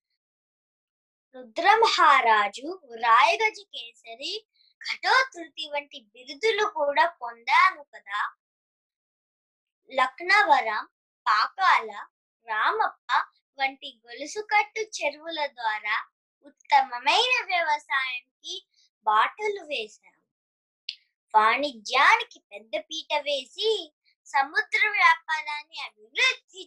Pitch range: 275-415 Hz